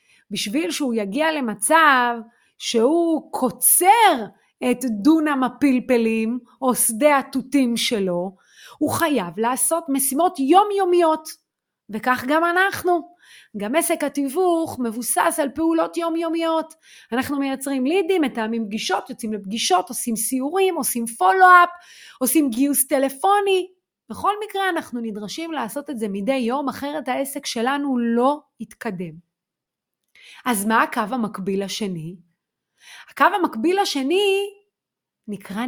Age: 30-49